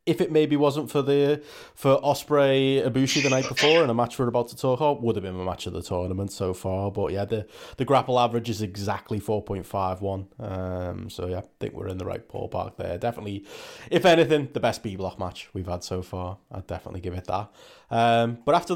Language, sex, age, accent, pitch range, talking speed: English, male, 20-39, British, 110-135 Hz, 235 wpm